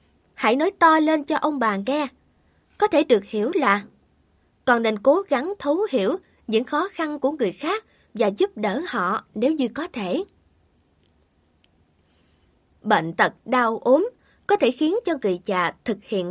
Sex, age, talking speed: female, 20-39, 165 wpm